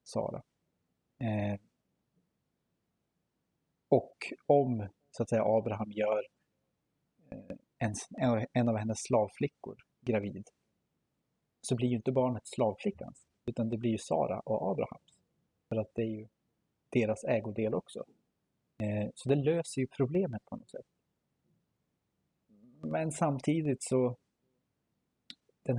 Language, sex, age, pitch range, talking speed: Swedish, male, 30-49, 110-130 Hz, 100 wpm